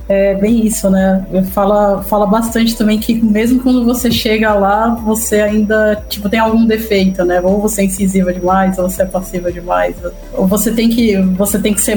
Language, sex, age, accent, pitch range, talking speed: Portuguese, female, 20-39, Brazilian, 190-210 Hz, 195 wpm